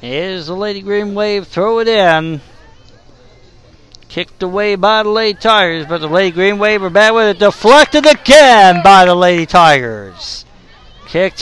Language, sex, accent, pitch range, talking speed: English, male, American, 130-215 Hz, 160 wpm